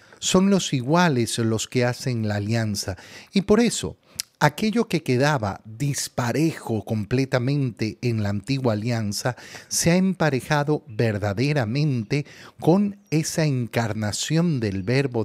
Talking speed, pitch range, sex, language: 115 wpm, 110-150 Hz, male, Spanish